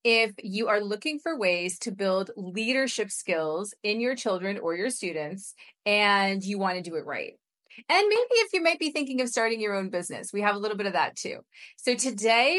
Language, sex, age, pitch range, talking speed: English, female, 30-49, 180-240 Hz, 215 wpm